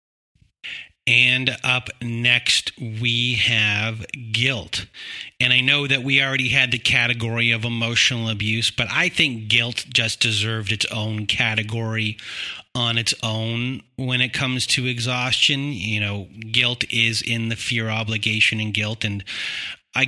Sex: male